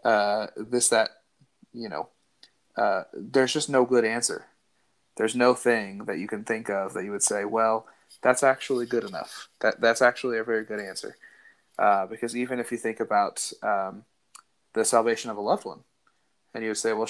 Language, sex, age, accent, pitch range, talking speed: English, male, 30-49, American, 105-115 Hz, 190 wpm